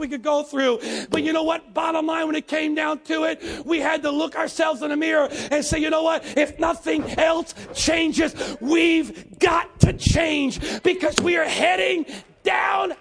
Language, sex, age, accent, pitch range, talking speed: English, male, 40-59, American, 250-310 Hz, 195 wpm